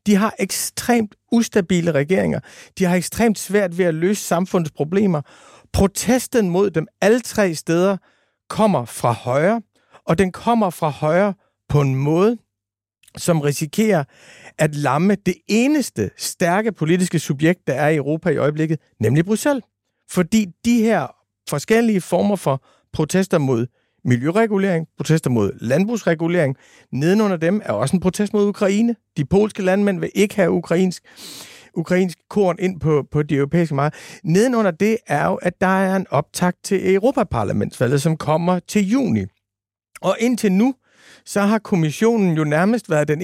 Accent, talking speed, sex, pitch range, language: native, 155 wpm, male, 150-205 Hz, Danish